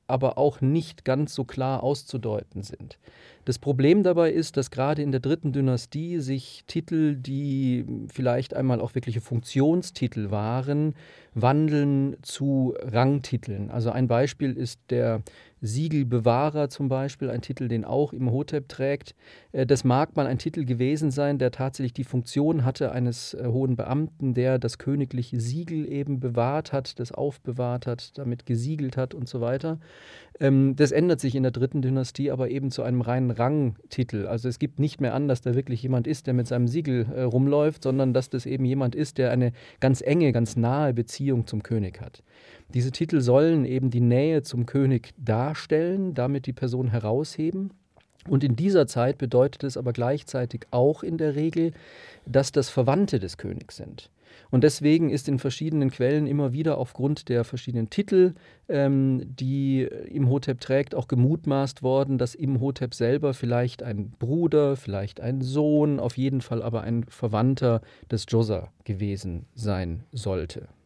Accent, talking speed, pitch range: German, 160 wpm, 125-145 Hz